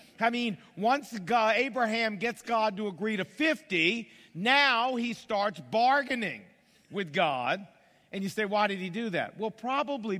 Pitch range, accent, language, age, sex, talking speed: 190-245 Hz, American, English, 50-69, male, 155 wpm